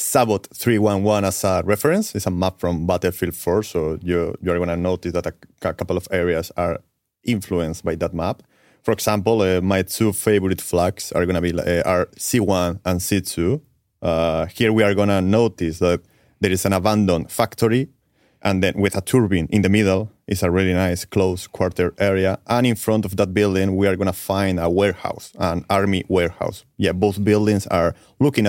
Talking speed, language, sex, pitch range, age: 200 wpm, English, male, 90-110 Hz, 30-49